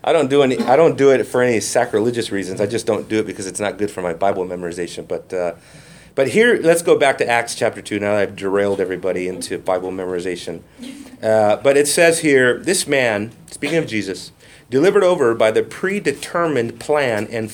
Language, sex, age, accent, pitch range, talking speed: English, male, 40-59, American, 110-155 Hz, 205 wpm